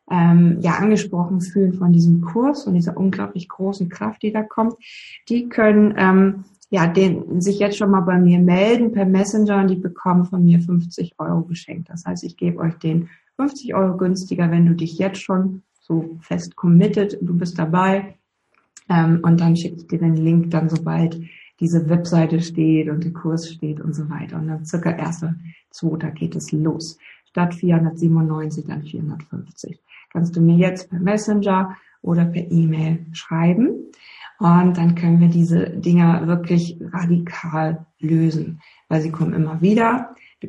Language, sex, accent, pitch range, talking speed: German, female, German, 165-190 Hz, 165 wpm